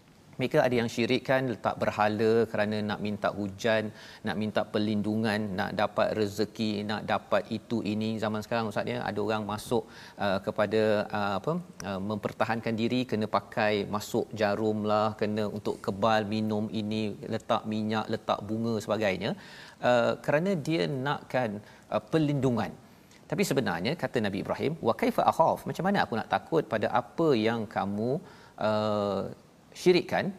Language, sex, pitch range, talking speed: Malayalam, male, 105-125 Hz, 145 wpm